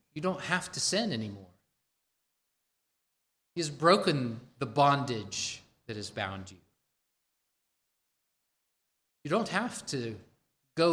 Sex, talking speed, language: male, 110 wpm, English